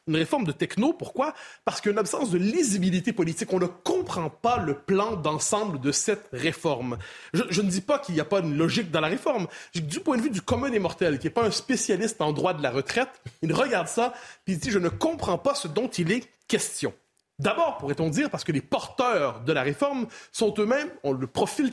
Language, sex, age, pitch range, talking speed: French, male, 30-49, 165-230 Hz, 235 wpm